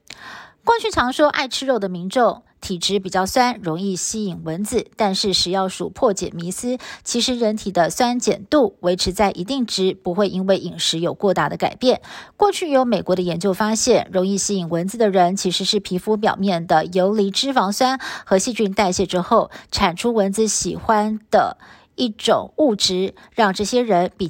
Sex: female